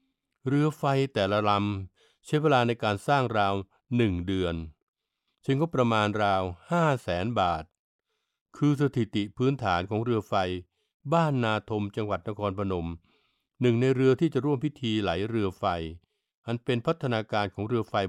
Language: Thai